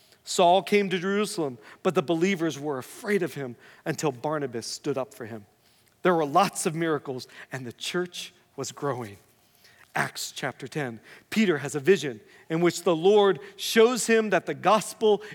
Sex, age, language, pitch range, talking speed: male, 40-59, English, 145-200 Hz, 170 wpm